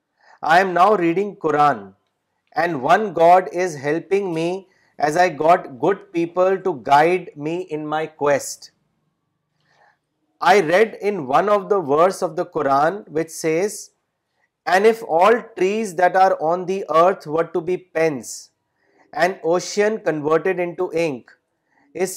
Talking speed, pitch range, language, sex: 145 wpm, 160-190 Hz, Urdu, male